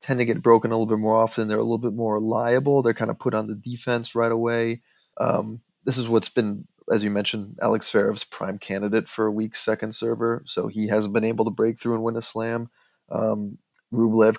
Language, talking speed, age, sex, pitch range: English, 230 wpm, 20-39, male, 110-125 Hz